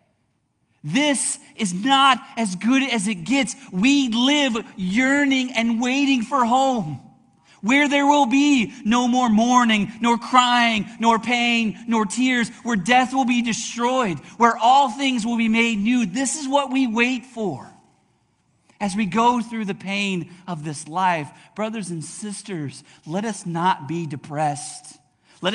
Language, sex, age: English, male, 40-59